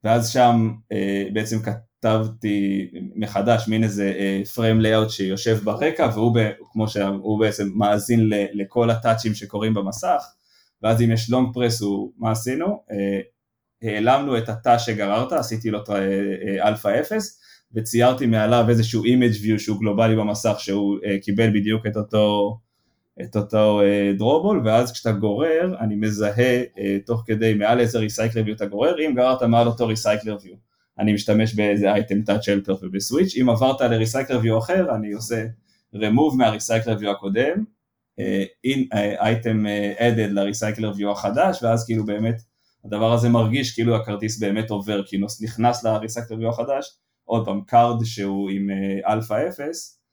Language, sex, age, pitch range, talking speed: Hebrew, male, 20-39, 105-115 Hz, 140 wpm